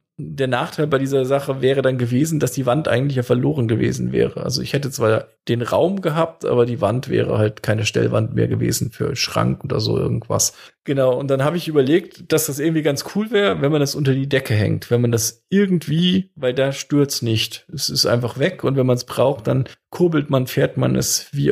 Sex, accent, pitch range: male, German, 120-150 Hz